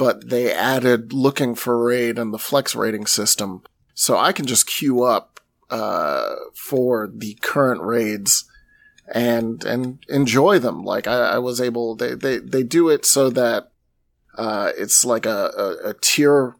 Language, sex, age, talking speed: English, male, 30-49, 165 wpm